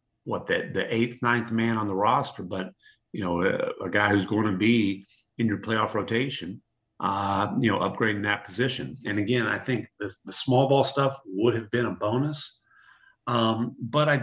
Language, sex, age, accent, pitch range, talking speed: English, male, 40-59, American, 105-125 Hz, 195 wpm